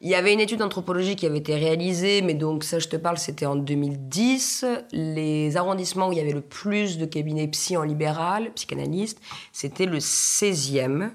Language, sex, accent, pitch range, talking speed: French, female, French, 150-180 Hz, 195 wpm